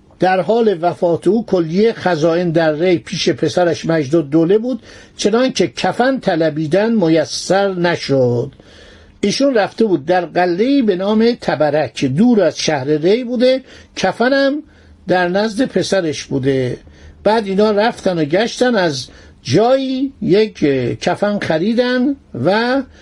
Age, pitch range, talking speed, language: 60-79, 165-220 Hz, 125 wpm, Persian